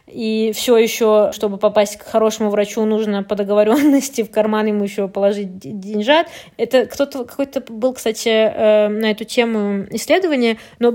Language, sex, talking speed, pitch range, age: Russian, female, 150 wpm, 215-270 Hz, 20-39